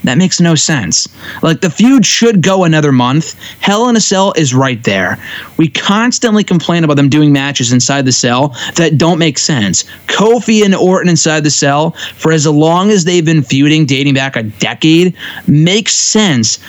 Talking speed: 185 wpm